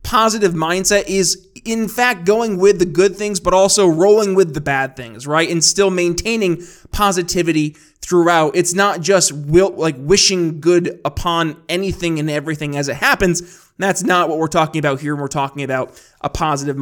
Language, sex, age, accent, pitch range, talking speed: English, male, 20-39, American, 165-210 Hz, 175 wpm